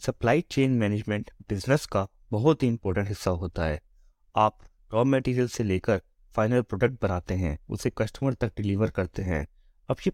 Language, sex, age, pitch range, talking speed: Hindi, male, 30-49, 95-135 Hz, 165 wpm